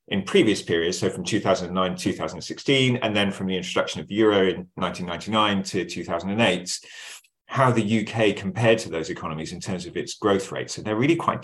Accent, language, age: British, English, 40-59